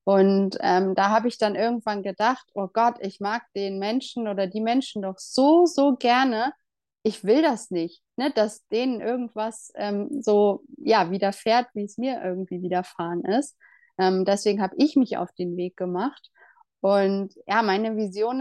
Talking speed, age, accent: 165 wpm, 30-49, German